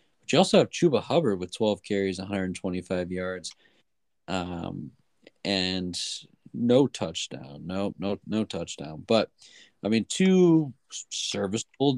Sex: male